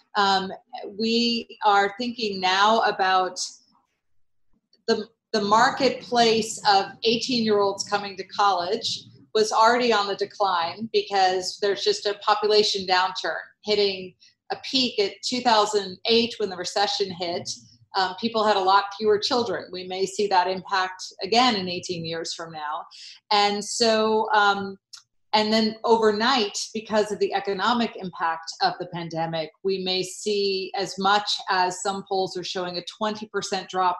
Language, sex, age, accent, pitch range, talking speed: English, female, 40-59, American, 185-220 Hz, 140 wpm